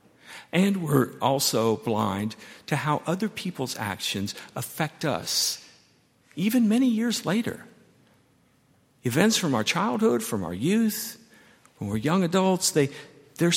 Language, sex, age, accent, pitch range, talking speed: English, male, 50-69, American, 125-175 Hz, 125 wpm